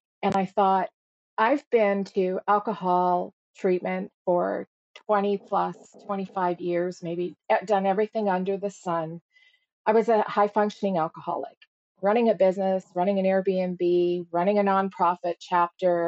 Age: 40-59